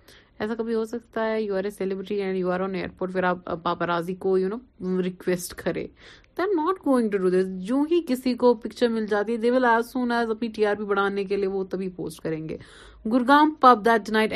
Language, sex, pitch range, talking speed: Urdu, female, 175-225 Hz, 55 wpm